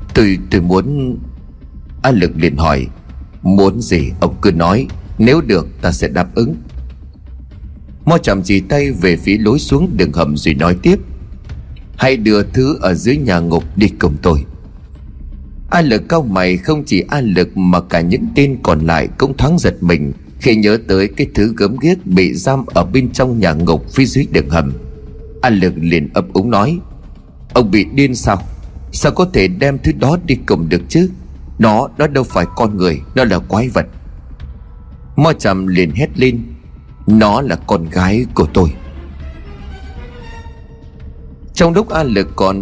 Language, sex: Vietnamese, male